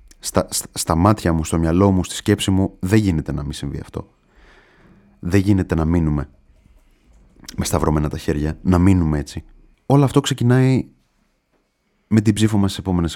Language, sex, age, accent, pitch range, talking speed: Greek, male, 30-49, native, 80-105 Hz, 165 wpm